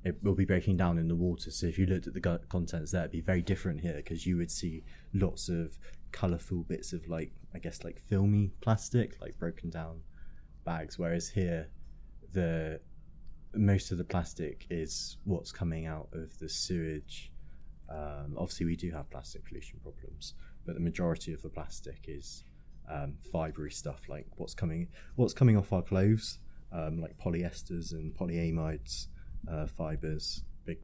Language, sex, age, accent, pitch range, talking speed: English, male, 20-39, British, 80-90 Hz, 170 wpm